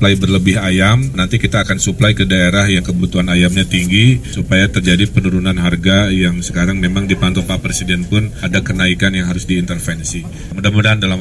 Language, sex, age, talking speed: Indonesian, male, 30-49, 165 wpm